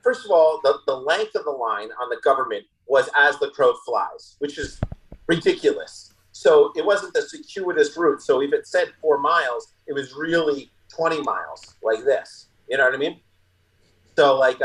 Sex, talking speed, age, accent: male, 190 wpm, 30-49, American